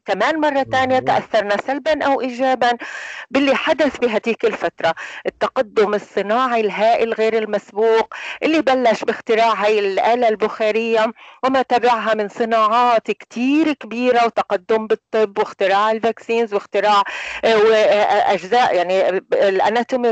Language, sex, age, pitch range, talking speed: Arabic, female, 40-59, 210-265 Hz, 105 wpm